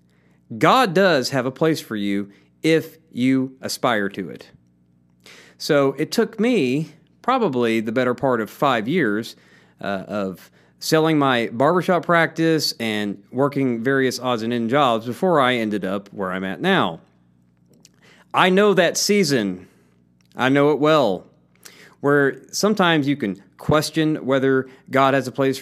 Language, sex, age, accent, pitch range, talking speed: English, male, 40-59, American, 105-155 Hz, 140 wpm